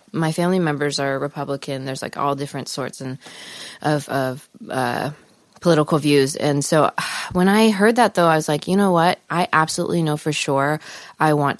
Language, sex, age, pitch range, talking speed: English, female, 20-39, 140-165 Hz, 185 wpm